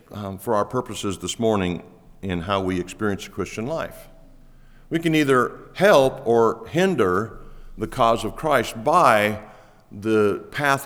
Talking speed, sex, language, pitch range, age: 140 wpm, male, English, 105-130 Hz, 50-69